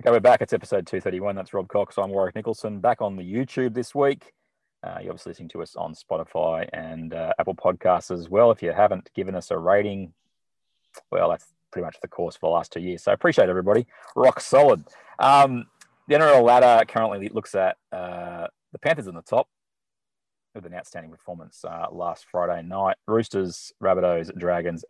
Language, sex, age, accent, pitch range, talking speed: English, male, 30-49, Australian, 85-105 Hz, 190 wpm